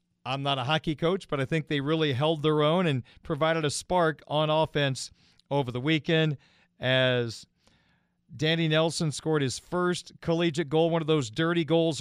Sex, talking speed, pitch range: male, 175 wpm, 145-180 Hz